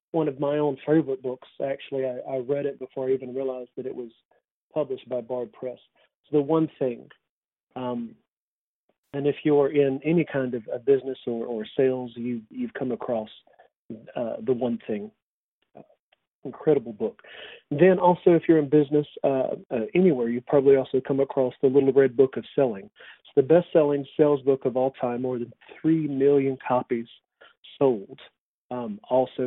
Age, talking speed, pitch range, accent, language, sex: 40-59, 175 wpm, 125-160 Hz, American, English, male